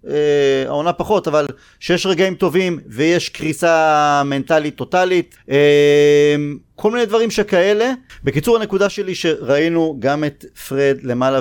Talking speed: 120 wpm